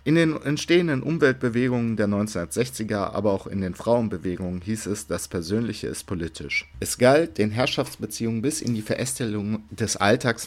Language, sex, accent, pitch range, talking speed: German, male, German, 90-110 Hz, 155 wpm